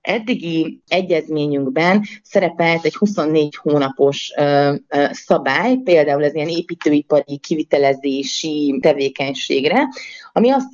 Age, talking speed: 30-49, 85 wpm